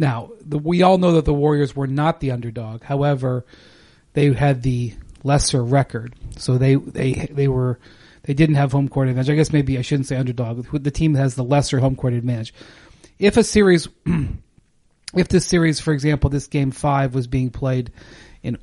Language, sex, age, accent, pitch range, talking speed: English, male, 40-59, American, 120-145 Hz, 190 wpm